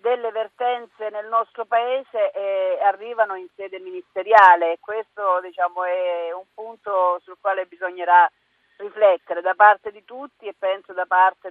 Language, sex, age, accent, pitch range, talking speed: Italian, female, 40-59, native, 195-235 Hz, 140 wpm